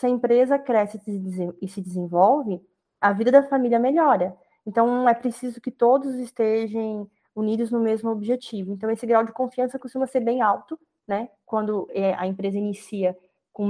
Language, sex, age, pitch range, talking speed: Portuguese, female, 20-39, 205-255 Hz, 160 wpm